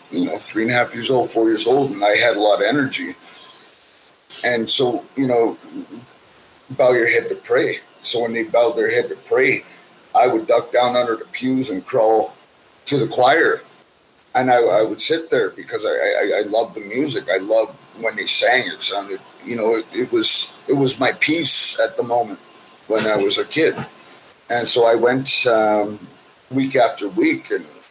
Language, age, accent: English, 50-69, American